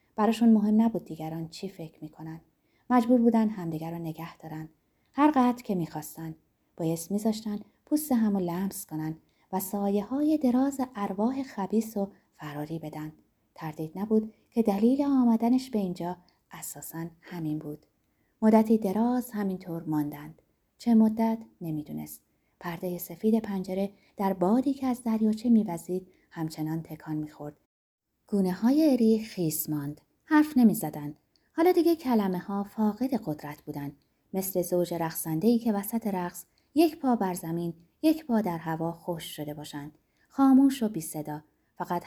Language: Persian